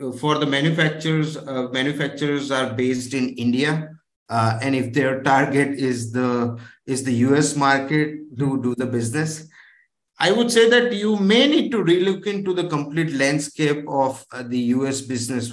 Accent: Indian